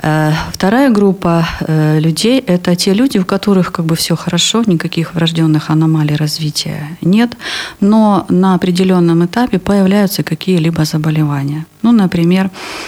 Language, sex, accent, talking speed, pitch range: Russian, female, native, 110 wpm, 155-190 Hz